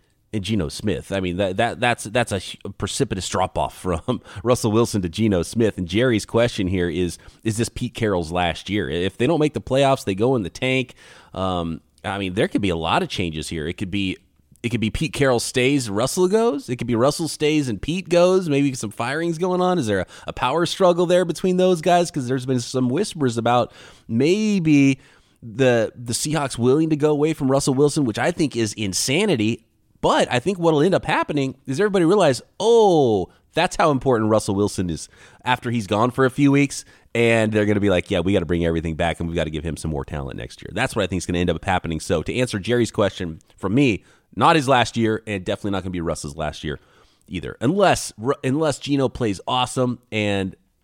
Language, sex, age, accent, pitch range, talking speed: English, male, 30-49, American, 95-135 Hz, 230 wpm